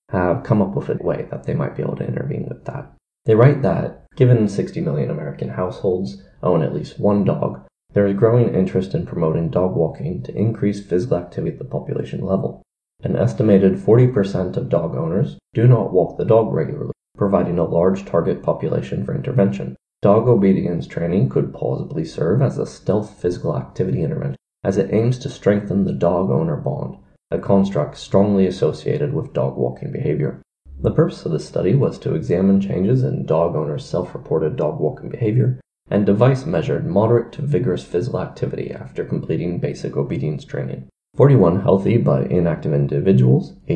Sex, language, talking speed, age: male, English, 170 wpm, 20-39